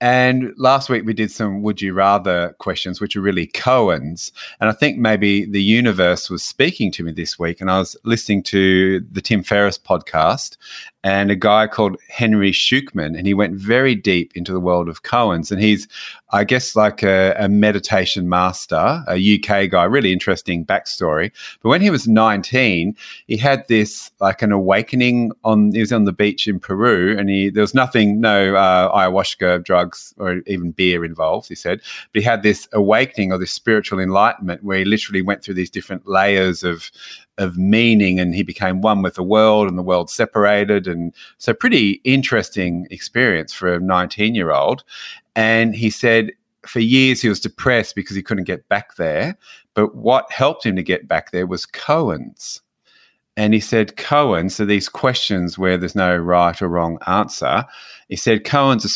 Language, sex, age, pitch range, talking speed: English, male, 30-49, 90-110 Hz, 185 wpm